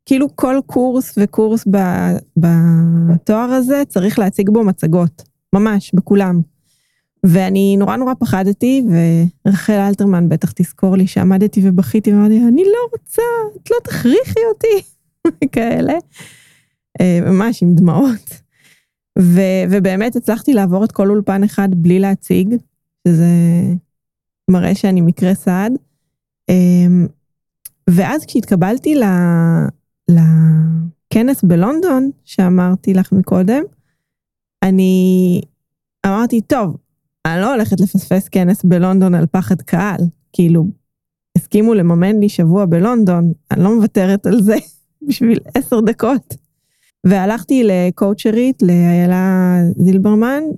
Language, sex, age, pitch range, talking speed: Hebrew, female, 20-39, 180-225 Hz, 105 wpm